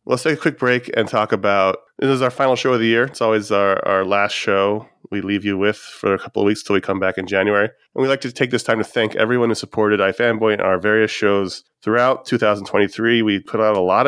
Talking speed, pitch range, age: 260 wpm, 95-120 Hz, 30-49